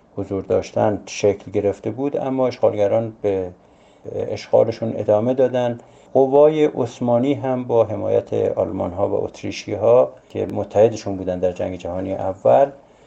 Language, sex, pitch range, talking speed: Persian, male, 100-120 Hz, 130 wpm